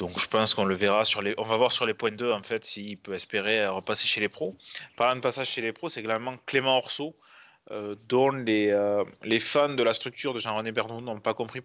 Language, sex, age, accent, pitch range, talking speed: French, male, 20-39, French, 105-125 Hz, 255 wpm